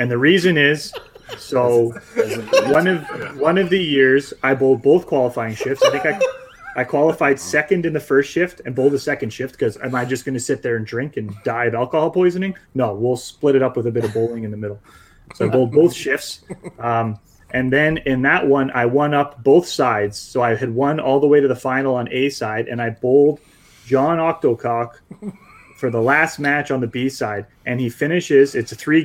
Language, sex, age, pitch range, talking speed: English, male, 30-49, 115-145 Hz, 220 wpm